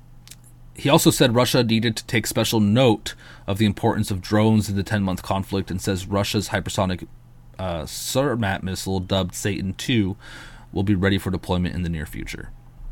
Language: English